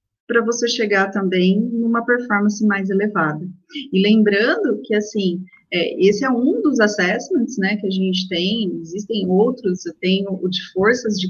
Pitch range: 185-250 Hz